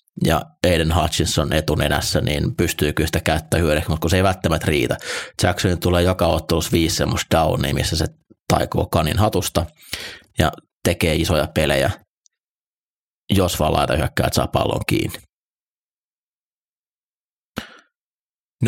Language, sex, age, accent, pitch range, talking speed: Finnish, male, 30-49, native, 80-95 Hz, 125 wpm